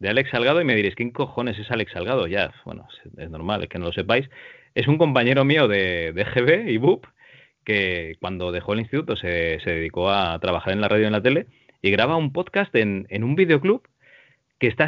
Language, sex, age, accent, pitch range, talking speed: Spanish, male, 30-49, Spanish, 100-140 Hz, 225 wpm